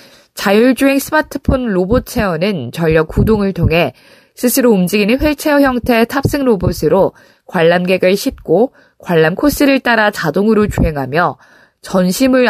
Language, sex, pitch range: Korean, female, 170-235 Hz